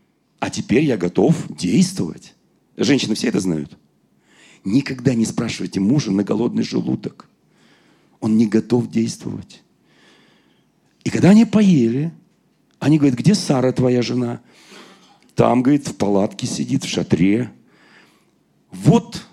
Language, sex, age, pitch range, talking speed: Russian, male, 40-59, 135-170 Hz, 120 wpm